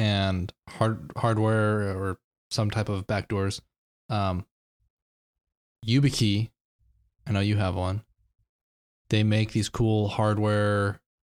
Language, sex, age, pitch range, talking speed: English, male, 20-39, 95-110 Hz, 105 wpm